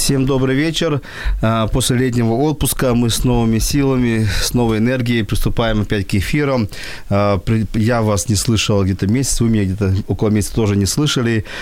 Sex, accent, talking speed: male, native, 160 wpm